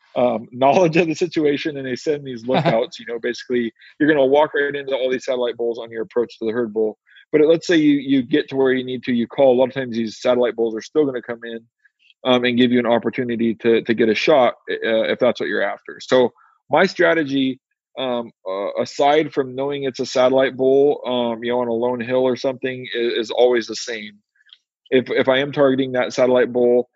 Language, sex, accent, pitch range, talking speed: English, male, American, 120-135 Hz, 240 wpm